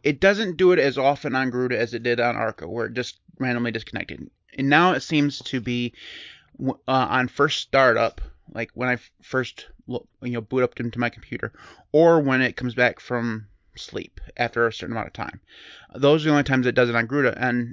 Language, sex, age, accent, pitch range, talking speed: English, male, 30-49, American, 120-145 Hz, 215 wpm